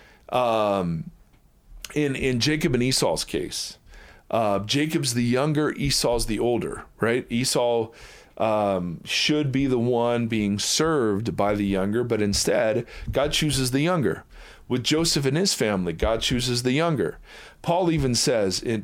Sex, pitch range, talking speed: male, 115-140 Hz, 145 wpm